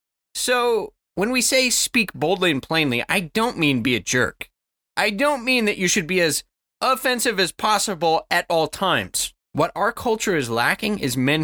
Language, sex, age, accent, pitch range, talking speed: English, male, 30-49, American, 160-240 Hz, 185 wpm